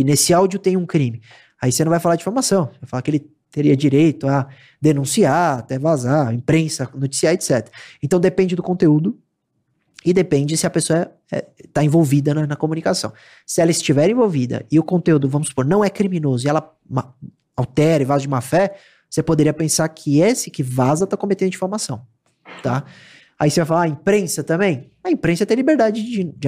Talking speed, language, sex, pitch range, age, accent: 200 wpm, Portuguese, male, 140-185 Hz, 20-39, Brazilian